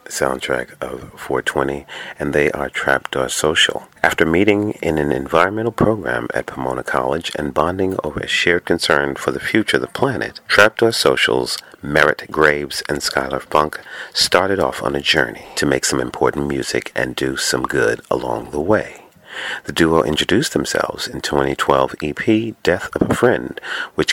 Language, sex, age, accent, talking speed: English, male, 40-59, American, 160 wpm